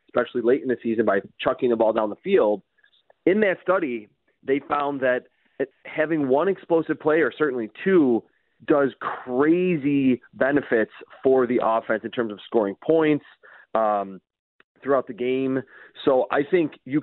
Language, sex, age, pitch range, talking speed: English, male, 30-49, 115-150 Hz, 150 wpm